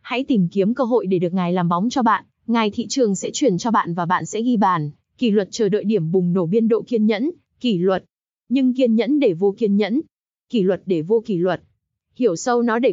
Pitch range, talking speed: 190-245 Hz, 250 wpm